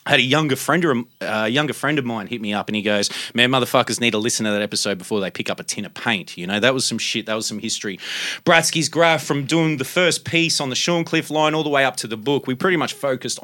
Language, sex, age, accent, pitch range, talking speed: English, male, 30-49, Australian, 115-150 Hz, 300 wpm